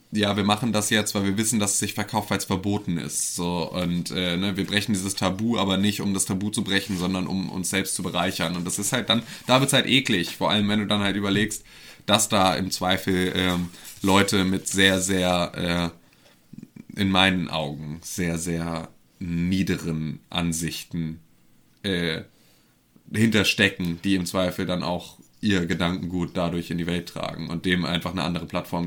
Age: 20-39